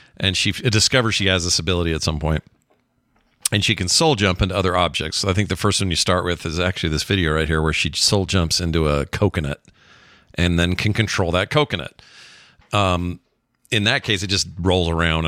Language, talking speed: English, 210 wpm